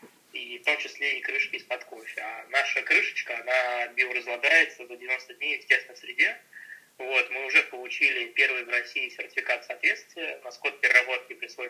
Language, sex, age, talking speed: Amharic, male, 20-39, 150 wpm